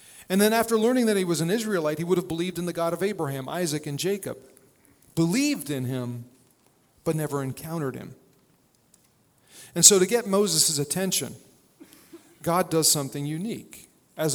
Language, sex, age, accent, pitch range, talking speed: English, male, 40-59, American, 145-185 Hz, 165 wpm